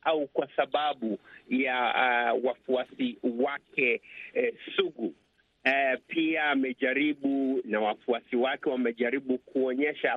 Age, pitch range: 50-69, 125-160 Hz